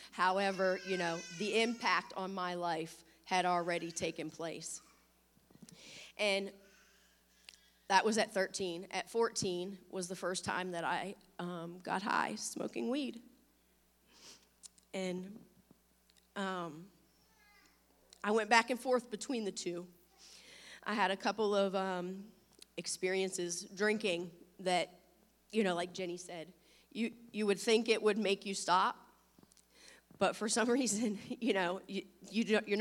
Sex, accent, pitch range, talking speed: female, American, 180-225 Hz, 130 wpm